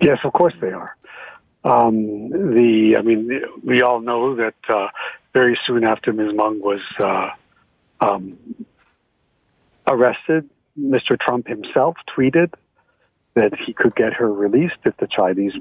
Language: English